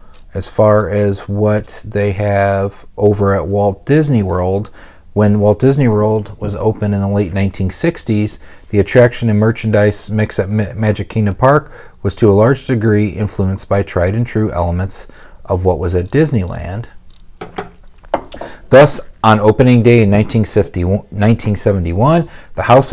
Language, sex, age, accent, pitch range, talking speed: English, male, 40-59, American, 100-120 Hz, 140 wpm